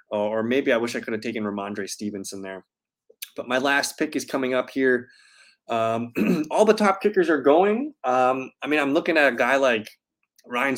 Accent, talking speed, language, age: American, 200 wpm, English, 20-39